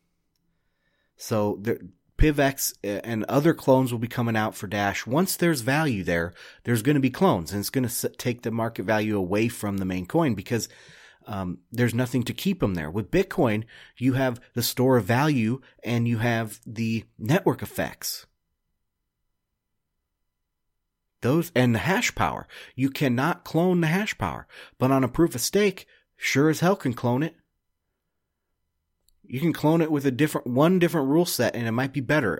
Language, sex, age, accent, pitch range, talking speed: English, male, 30-49, American, 100-135 Hz, 175 wpm